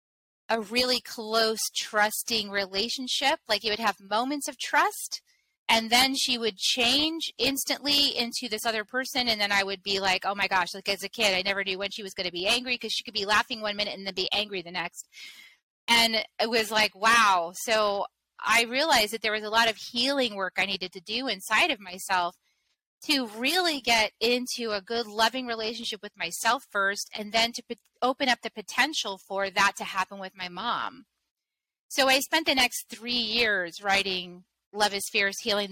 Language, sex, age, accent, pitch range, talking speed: English, female, 30-49, American, 190-235 Hz, 200 wpm